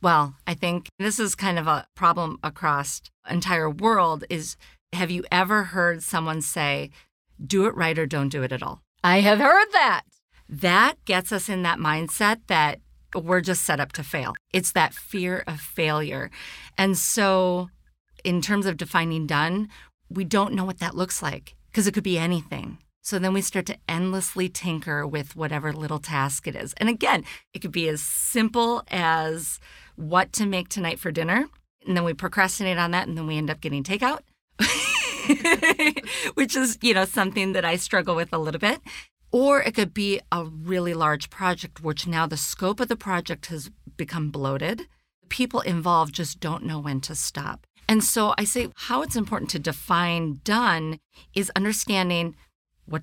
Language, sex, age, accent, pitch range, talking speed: English, female, 40-59, American, 160-200 Hz, 180 wpm